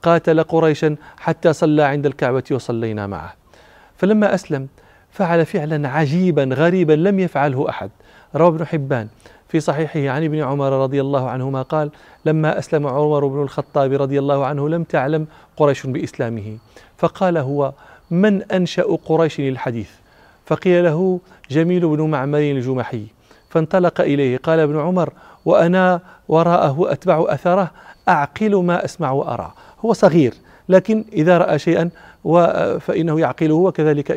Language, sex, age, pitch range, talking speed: Arabic, male, 40-59, 140-175 Hz, 135 wpm